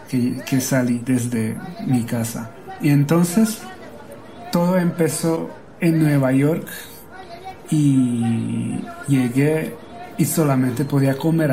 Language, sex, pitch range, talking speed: Spanish, male, 125-145 Hz, 100 wpm